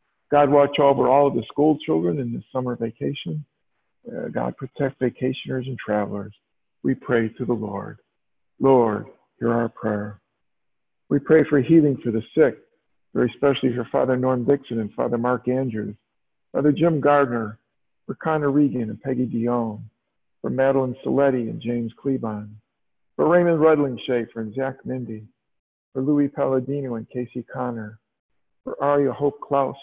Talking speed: 155 wpm